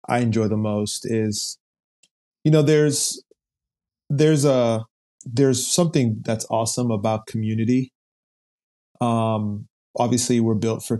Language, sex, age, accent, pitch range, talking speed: English, male, 30-49, American, 110-125 Hz, 115 wpm